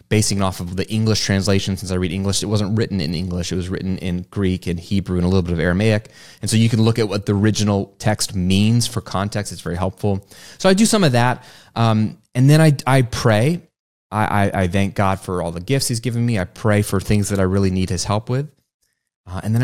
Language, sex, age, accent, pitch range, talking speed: English, male, 30-49, American, 90-115 Hz, 250 wpm